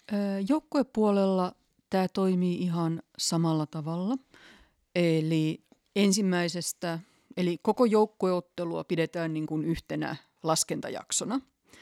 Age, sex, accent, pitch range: 30-49, female, native, 155-195 Hz